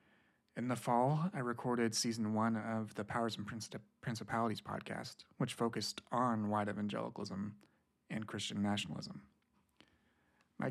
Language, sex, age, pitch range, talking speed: English, male, 30-49, 105-115 Hz, 130 wpm